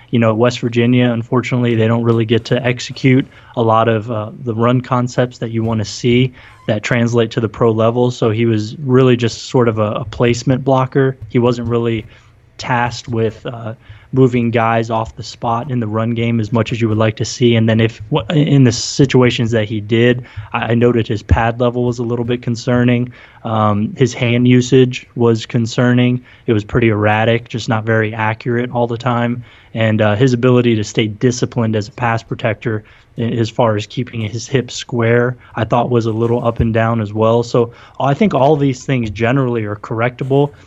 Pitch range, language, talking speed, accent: 115-125 Hz, English, 200 wpm, American